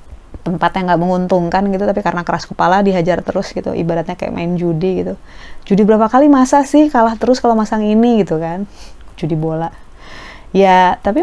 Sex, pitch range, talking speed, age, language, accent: female, 170-230 Hz, 170 wpm, 20-39, Indonesian, native